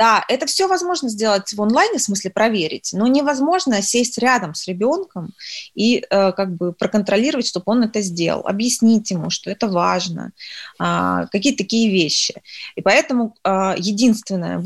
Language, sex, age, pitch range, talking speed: Russian, female, 20-39, 190-235 Hz, 145 wpm